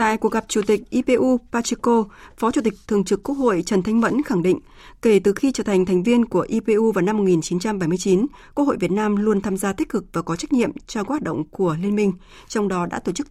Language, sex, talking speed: Vietnamese, female, 250 wpm